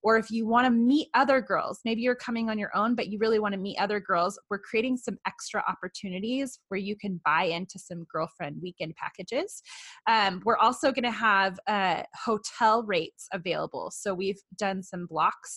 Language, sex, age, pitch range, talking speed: English, female, 20-39, 180-220 Hz, 195 wpm